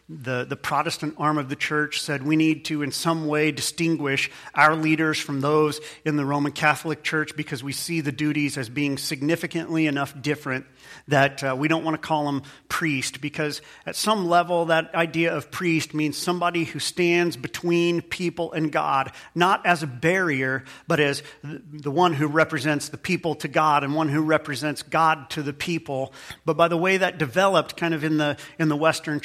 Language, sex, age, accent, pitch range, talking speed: English, male, 40-59, American, 145-170 Hz, 195 wpm